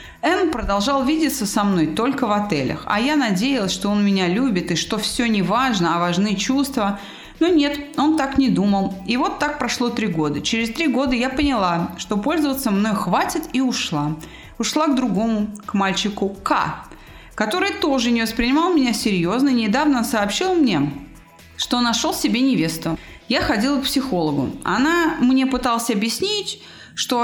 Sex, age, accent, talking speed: female, 30-49, native, 165 wpm